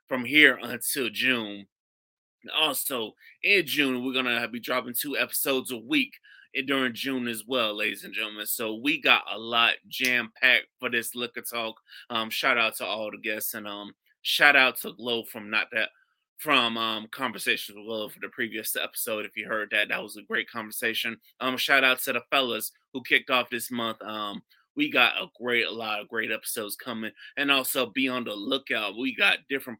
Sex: male